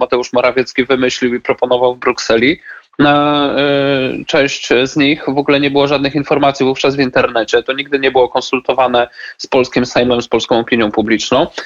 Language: Polish